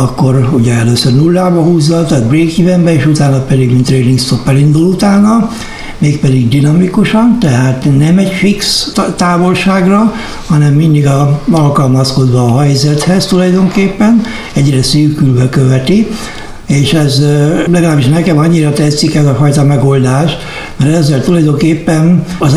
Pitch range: 130-170 Hz